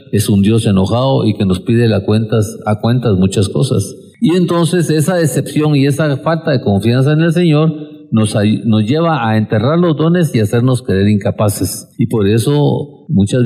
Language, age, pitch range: Spanish, 50-69, 100-140 Hz